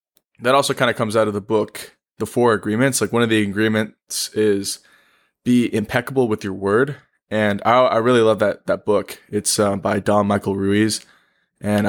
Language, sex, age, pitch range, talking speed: English, male, 20-39, 100-120 Hz, 190 wpm